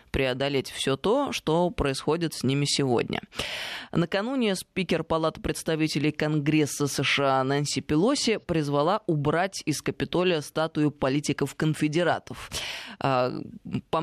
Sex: female